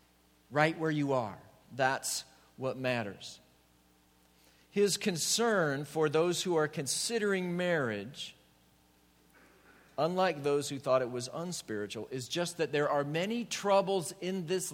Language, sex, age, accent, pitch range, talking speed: English, male, 50-69, American, 105-170 Hz, 125 wpm